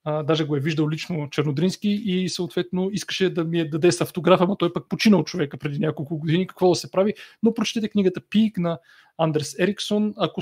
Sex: male